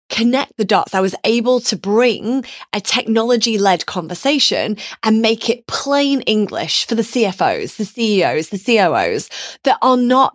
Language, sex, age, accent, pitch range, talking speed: English, female, 20-39, British, 185-240 Hz, 155 wpm